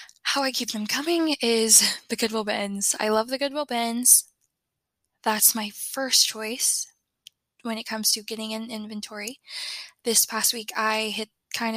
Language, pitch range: English, 210-235 Hz